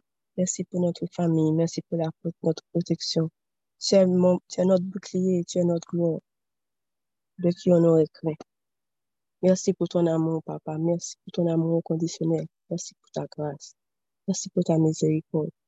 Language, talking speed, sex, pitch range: French, 155 wpm, female, 155-185 Hz